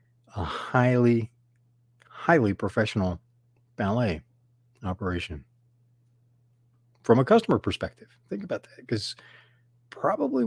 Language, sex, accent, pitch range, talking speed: English, male, American, 115-135 Hz, 85 wpm